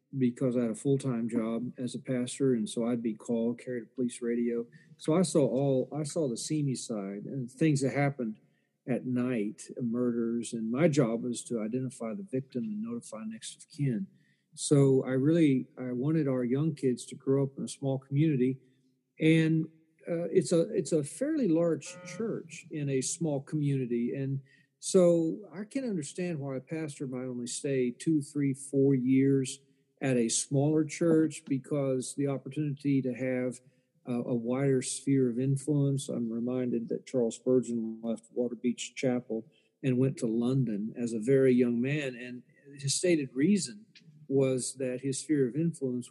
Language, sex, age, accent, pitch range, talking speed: English, male, 40-59, American, 125-155 Hz, 175 wpm